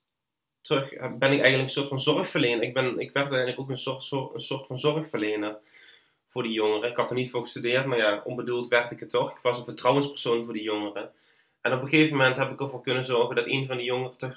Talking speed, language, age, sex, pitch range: 245 wpm, Dutch, 20-39, male, 120-140 Hz